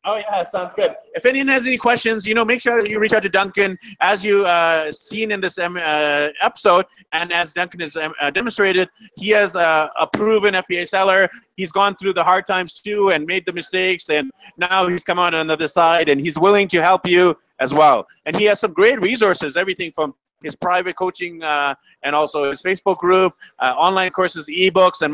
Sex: male